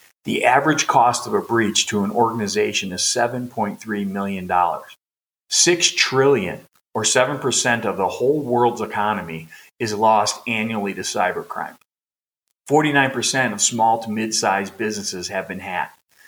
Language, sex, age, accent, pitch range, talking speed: English, male, 40-59, American, 100-130 Hz, 130 wpm